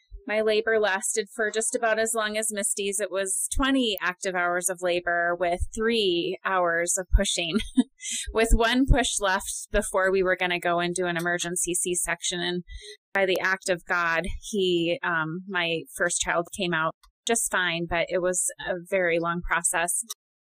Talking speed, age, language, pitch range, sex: 175 wpm, 20-39, English, 185-225 Hz, female